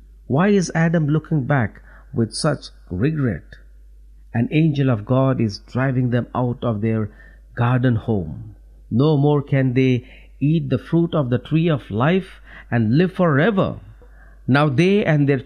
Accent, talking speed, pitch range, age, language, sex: Indian, 150 wpm, 115-165 Hz, 50-69, English, male